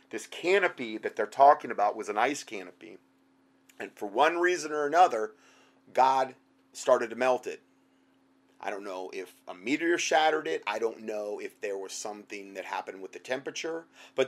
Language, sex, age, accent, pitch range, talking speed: English, male, 30-49, American, 120-180 Hz, 175 wpm